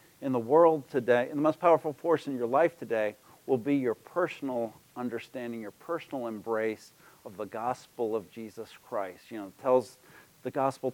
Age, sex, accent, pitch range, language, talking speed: 50-69, male, American, 110-140 Hz, English, 175 wpm